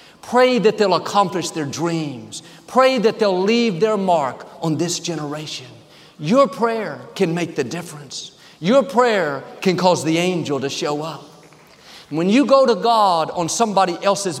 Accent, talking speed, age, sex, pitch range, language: American, 160 wpm, 50-69, male, 165-215 Hz, English